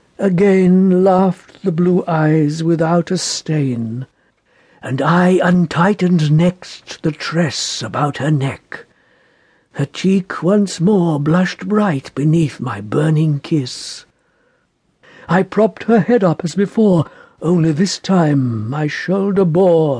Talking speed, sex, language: 120 wpm, male, English